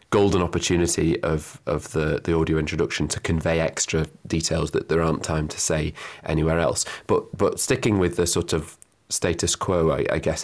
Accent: British